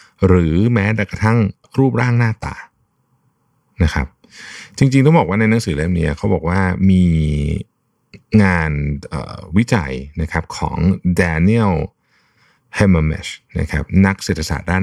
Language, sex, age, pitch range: Thai, male, 60-79, 80-105 Hz